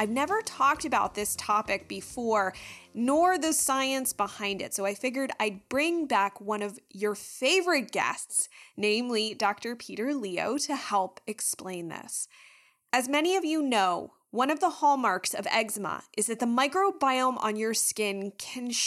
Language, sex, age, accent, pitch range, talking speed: English, female, 20-39, American, 205-280 Hz, 160 wpm